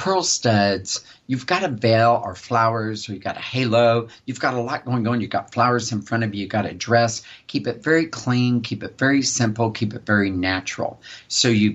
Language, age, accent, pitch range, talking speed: English, 50-69, American, 110-135 Hz, 225 wpm